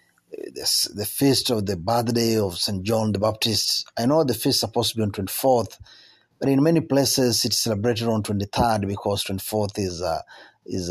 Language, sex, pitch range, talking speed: Swahili, male, 110-140 Hz, 185 wpm